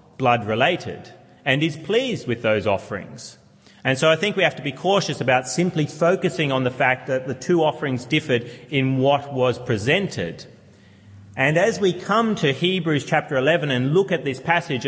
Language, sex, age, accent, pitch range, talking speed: English, male, 30-49, Australian, 120-155 Hz, 180 wpm